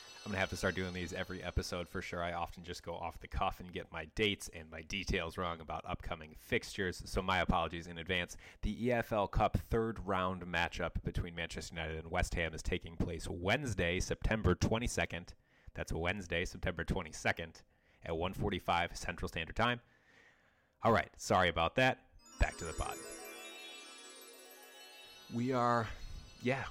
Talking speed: 165 wpm